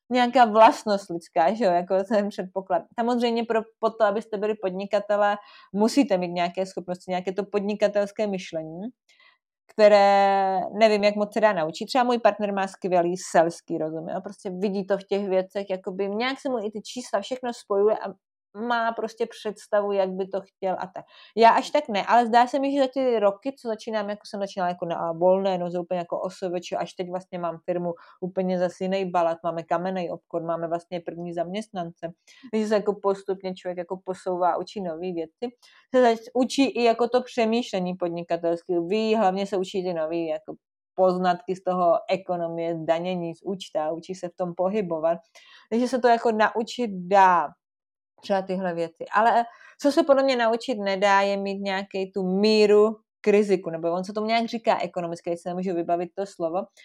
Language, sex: Czech, female